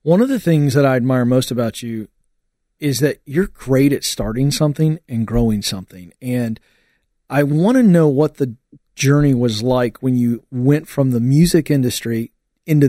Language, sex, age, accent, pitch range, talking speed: English, male, 40-59, American, 120-160 Hz, 175 wpm